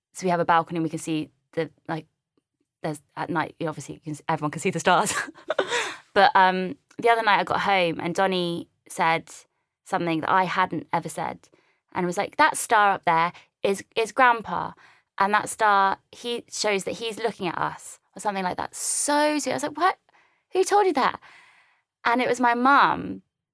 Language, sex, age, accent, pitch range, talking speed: English, female, 20-39, British, 165-215 Hz, 210 wpm